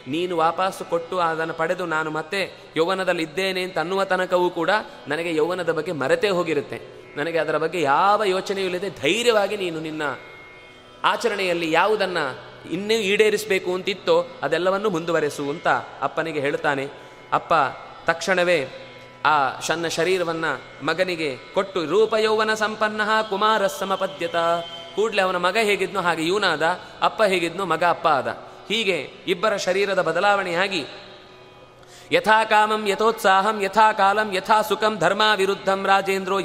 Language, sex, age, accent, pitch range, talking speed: Kannada, male, 20-39, native, 165-200 Hz, 115 wpm